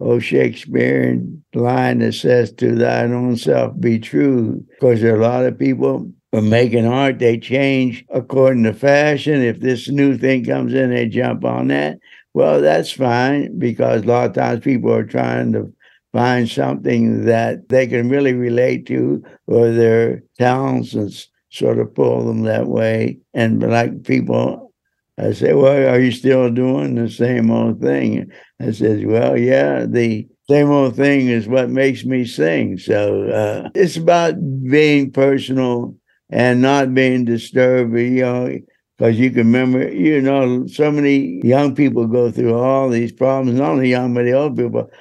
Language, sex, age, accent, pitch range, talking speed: English, male, 60-79, American, 115-135 Hz, 170 wpm